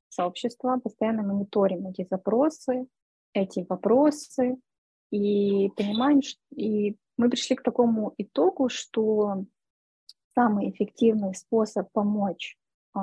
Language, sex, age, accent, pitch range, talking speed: Russian, female, 20-39, native, 195-240 Hz, 90 wpm